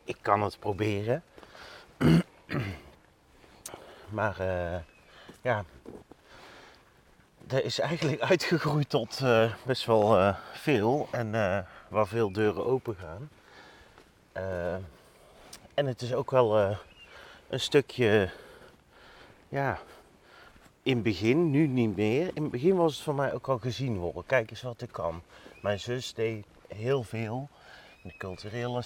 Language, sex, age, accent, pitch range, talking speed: Dutch, male, 30-49, Dutch, 105-130 Hz, 130 wpm